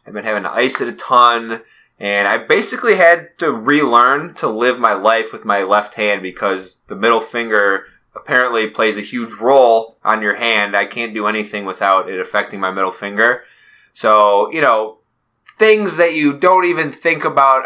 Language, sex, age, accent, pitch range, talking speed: English, male, 20-39, American, 105-140 Hz, 185 wpm